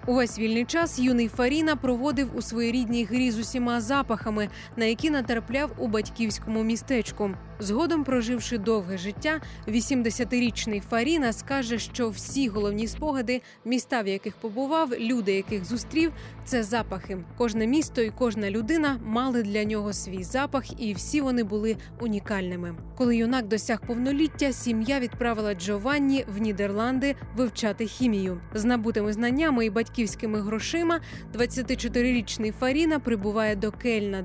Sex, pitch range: female, 215-255 Hz